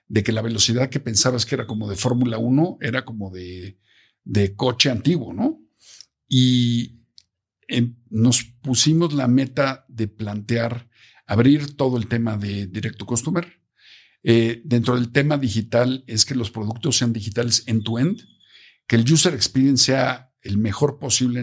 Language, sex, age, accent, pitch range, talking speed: Spanish, male, 50-69, Mexican, 115-140 Hz, 150 wpm